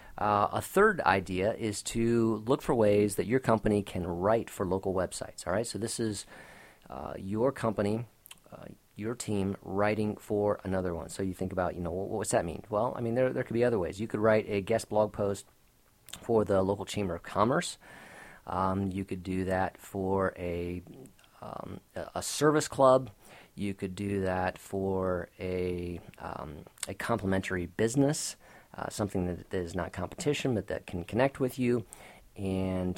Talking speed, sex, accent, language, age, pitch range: 180 wpm, male, American, English, 40-59, 95-115 Hz